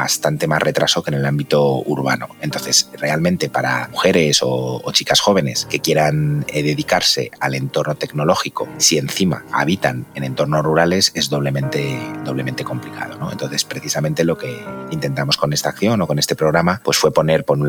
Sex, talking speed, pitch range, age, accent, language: male, 170 wpm, 70-85 Hz, 30-49, Spanish, Spanish